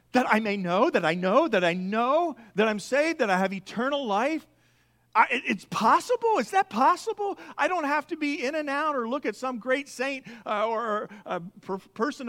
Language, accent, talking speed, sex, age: English, American, 220 wpm, male, 40-59